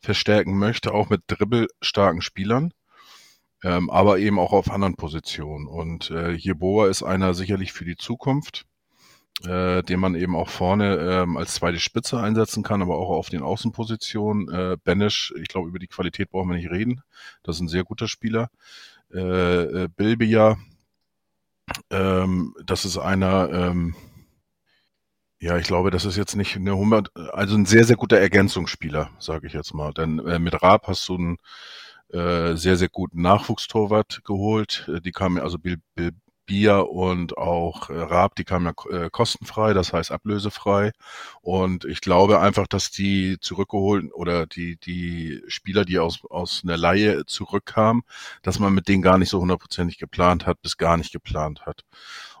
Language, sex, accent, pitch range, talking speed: German, male, German, 85-105 Hz, 165 wpm